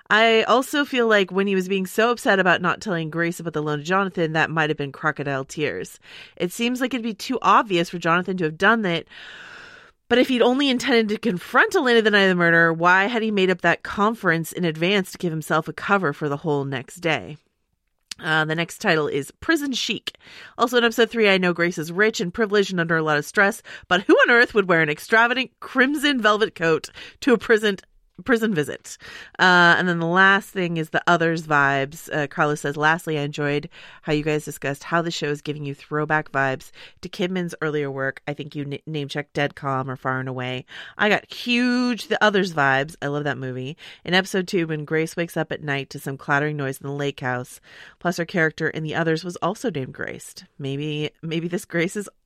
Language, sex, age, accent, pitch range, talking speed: English, female, 30-49, American, 150-210 Hz, 225 wpm